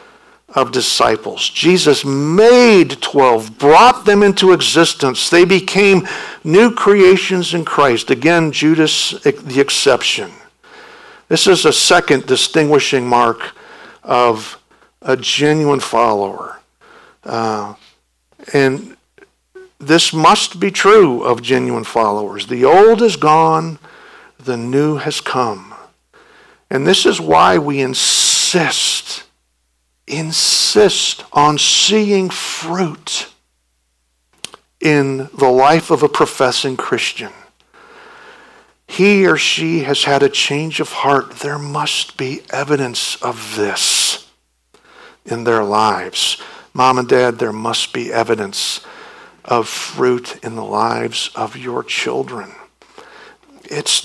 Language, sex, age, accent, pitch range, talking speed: English, male, 60-79, American, 125-185 Hz, 110 wpm